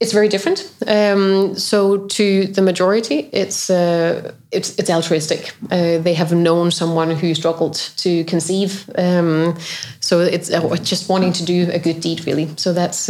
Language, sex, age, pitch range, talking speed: English, female, 30-49, 165-185 Hz, 165 wpm